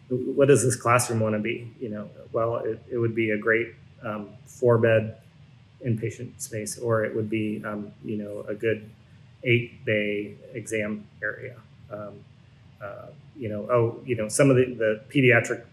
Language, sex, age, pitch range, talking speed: English, male, 30-49, 110-130 Hz, 170 wpm